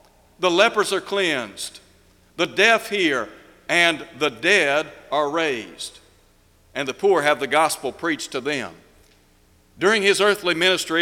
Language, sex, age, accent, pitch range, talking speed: English, male, 60-79, American, 150-200 Hz, 135 wpm